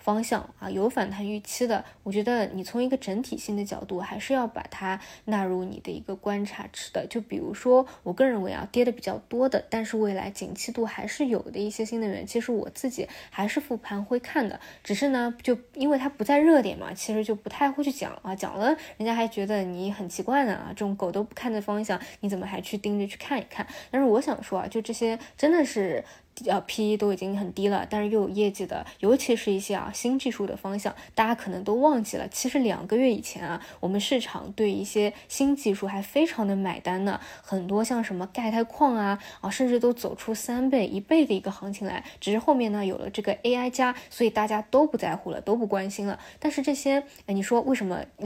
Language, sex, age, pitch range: Chinese, female, 10-29, 195-245 Hz